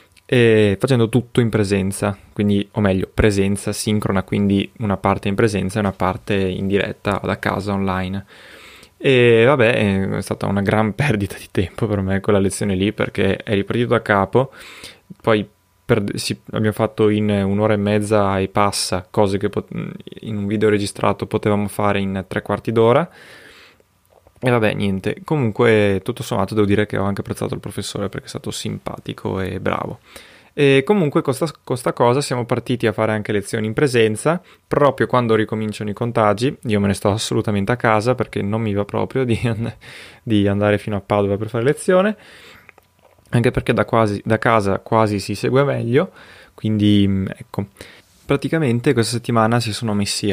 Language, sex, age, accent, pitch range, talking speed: Italian, male, 20-39, native, 100-120 Hz, 175 wpm